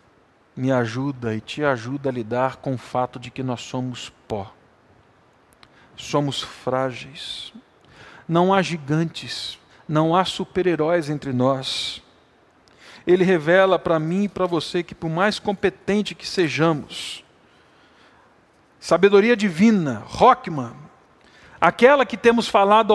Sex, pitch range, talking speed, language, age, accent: male, 155-215 Hz, 120 wpm, Portuguese, 50-69, Brazilian